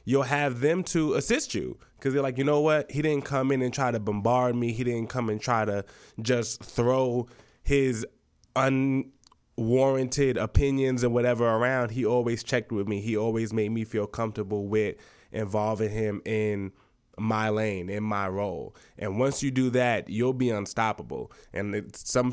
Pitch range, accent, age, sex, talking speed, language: 105-130 Hz, American, 20-39, male, 175 wpm, English